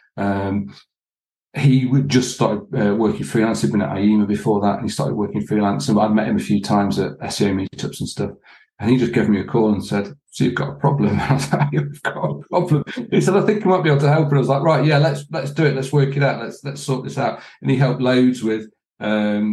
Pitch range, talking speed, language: 105-135 Hz, 265 wpm, English